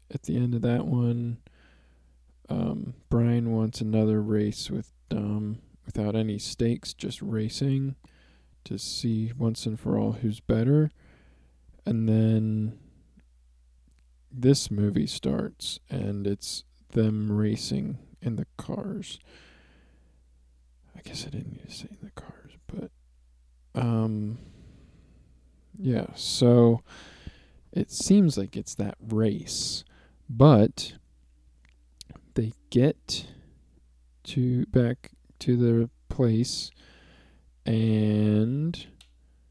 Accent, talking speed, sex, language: American, 105 wpm, male, English